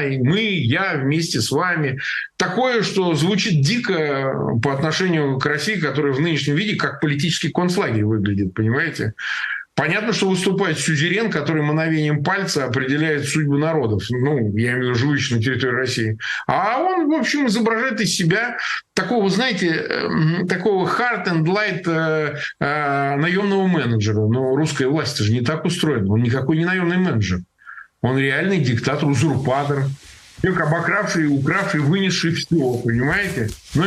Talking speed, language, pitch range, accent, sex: 140 wpm, Russian, 135-190 Hz, native, male